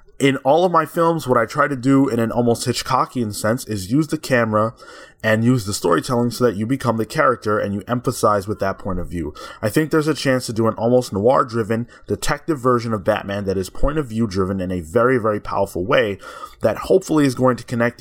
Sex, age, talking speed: male, 20-39, 225 wpm